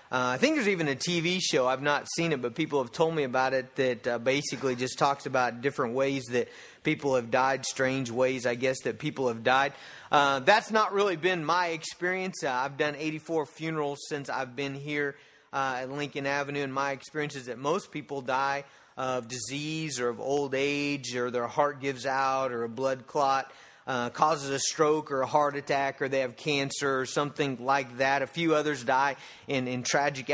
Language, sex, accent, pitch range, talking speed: English, male, American, 135-165 Hz, 210 wpm